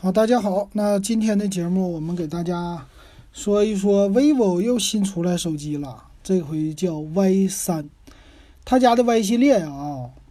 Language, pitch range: Chinese, 165-205 Hz